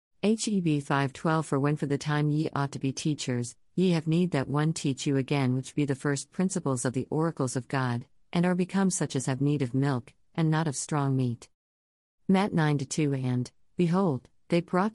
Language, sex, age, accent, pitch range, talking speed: English, female, 50-69, American, 130-170 Hz, 200 wpm